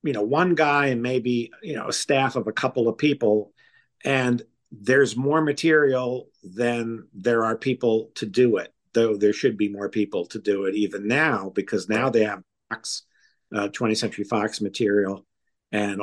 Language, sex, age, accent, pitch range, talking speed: English, male, 50-69, American, 110-140 Hz, 175 wpm